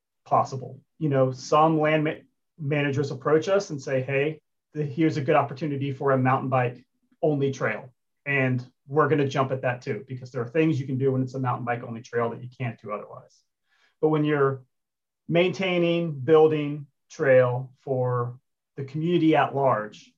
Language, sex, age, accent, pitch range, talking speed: English, male, 30-49, American, 125-150 Hz, 175 wpm